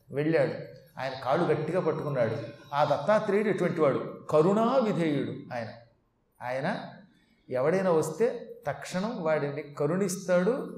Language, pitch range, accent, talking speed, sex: Telugu, 150-200 Hz, native, 95 wpm, male